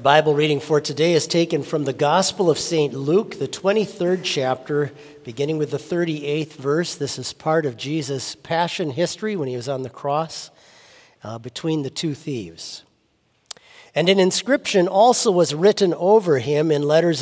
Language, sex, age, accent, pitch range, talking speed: English, male, 50-69, American, 140-190 Hz, 165 wpm